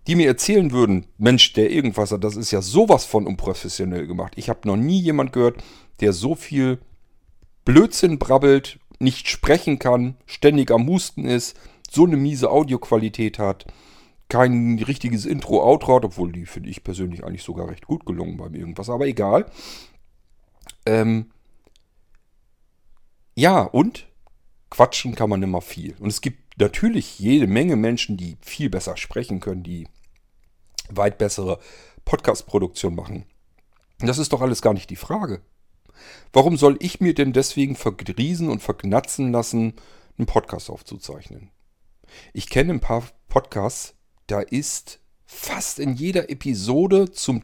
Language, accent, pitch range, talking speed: German, German, 100-135 Hz, 145 wpm